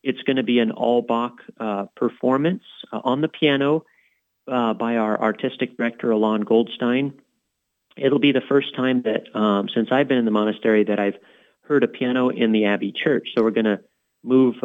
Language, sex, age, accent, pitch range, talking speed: English, male, 40-59, American, 110-130 Hz, 195 wpm